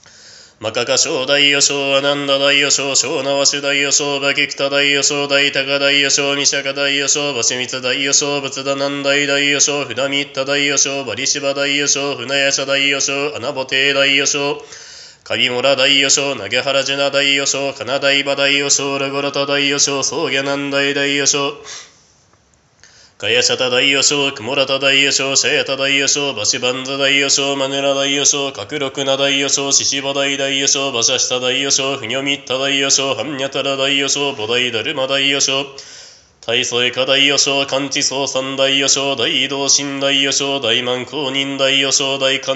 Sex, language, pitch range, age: male, Japanese, 135-140 Hz, 20-39